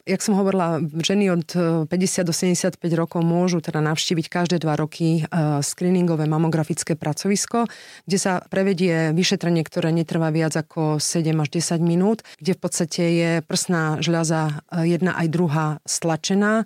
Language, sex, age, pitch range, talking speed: Slovak, female, 30-49, 160-185 Hz, 145 wpm